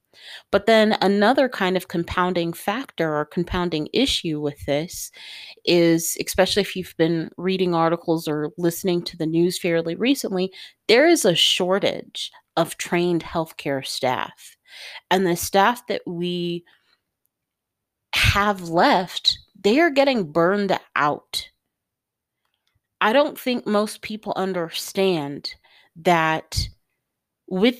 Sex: female